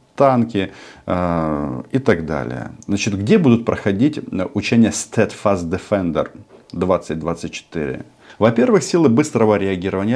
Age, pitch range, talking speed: 40-59, 85-105 Hz, 100 wpm